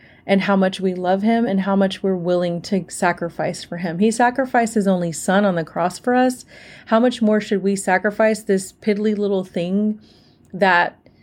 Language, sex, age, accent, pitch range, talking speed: English, female, 30-49, American, 180-220 Hz, 190 wpm